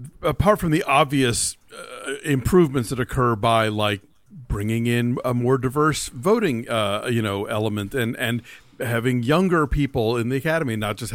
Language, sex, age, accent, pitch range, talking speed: English, male, 50-69, American, 125-185 Hz, 160 wpm